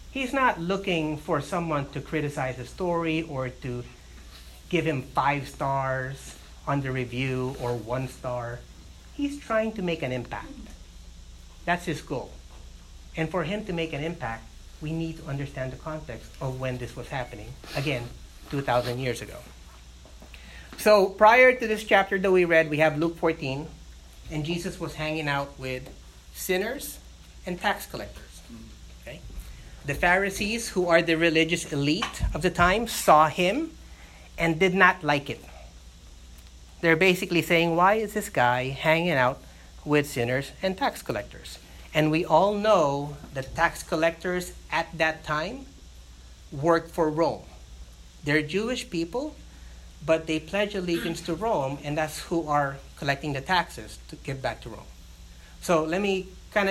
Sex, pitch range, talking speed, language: male, 120-170 Hz, 150 wpm, English